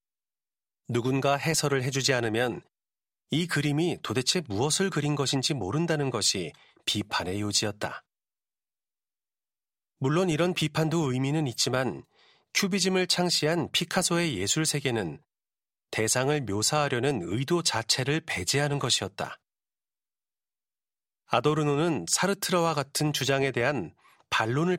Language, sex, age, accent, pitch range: Korean, male, 40-59, native, 125-160 Hz